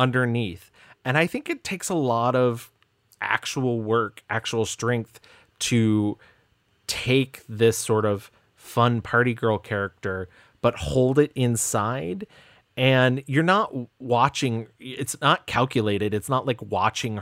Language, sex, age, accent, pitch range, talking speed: English, male, 30-49, American, 105-130 Hz, 130 wpm